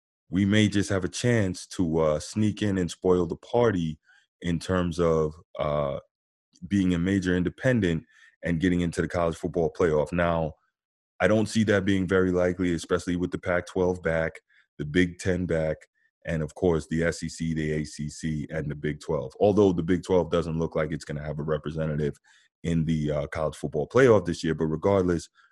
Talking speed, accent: 190 wpm, American